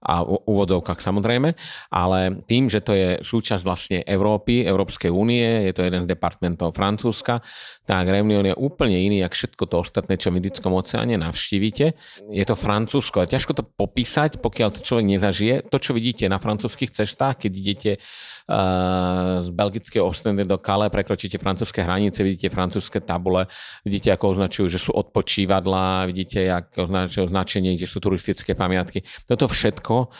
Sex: male